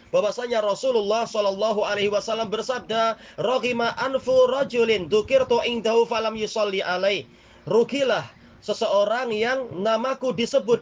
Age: 30-49